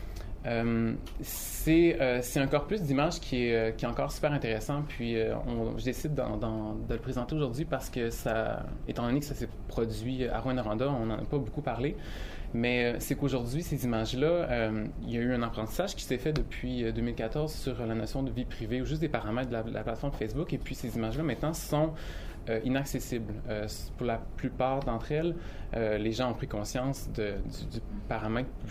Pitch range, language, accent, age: 110-135 Hz, French, Canadian, 20-39